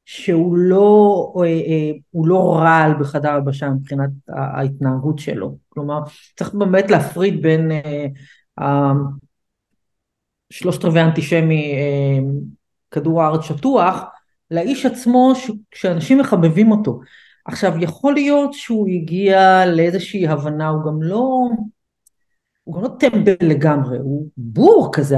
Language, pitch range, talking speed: Hebrew, 150-210 Hz, 105 wpm